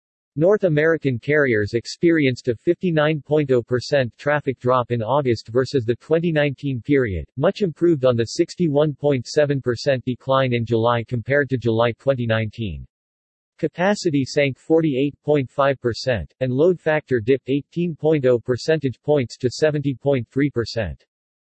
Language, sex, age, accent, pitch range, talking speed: English, male, 50-69, American, 120-150 Hz, 105 wpm